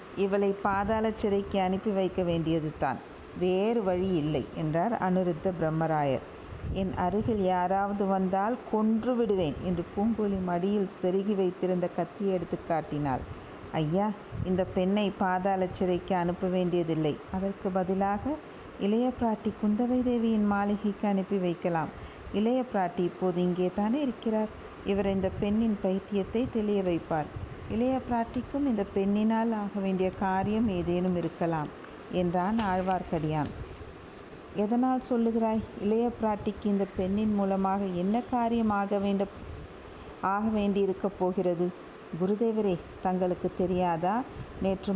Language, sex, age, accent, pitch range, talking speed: Tamil, female, 50-69, native, 180-215 Hz, 100 wpm